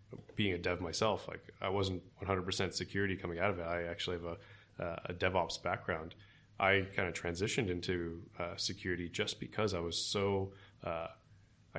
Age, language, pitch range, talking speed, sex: 20-39, English, 90-105 Hz, 175 wpm, male